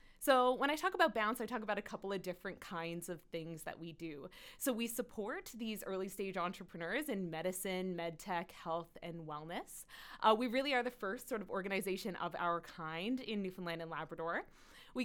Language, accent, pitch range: English, American, 175-235 Hz